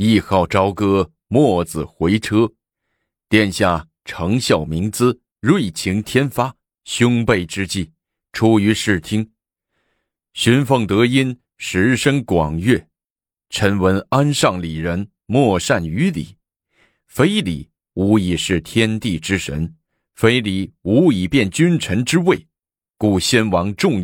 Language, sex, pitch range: Chinese, male, 85-115 Hz